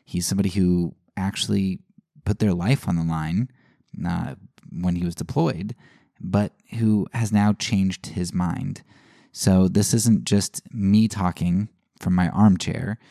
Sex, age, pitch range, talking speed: male, 20-39, 90-115 Hz, 135 wpm